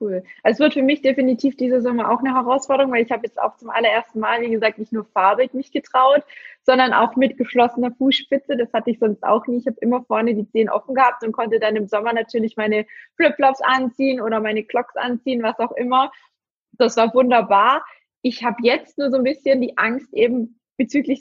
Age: 20-39